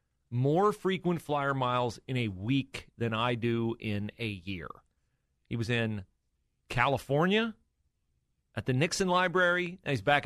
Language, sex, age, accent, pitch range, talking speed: English, male, 40-59, American, 105-145 Hz, 135 wpm